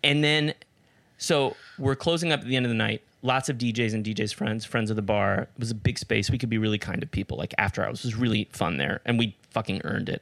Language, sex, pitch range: English, male, 115-160 Hz